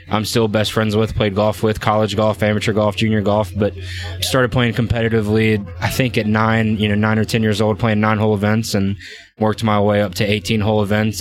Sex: male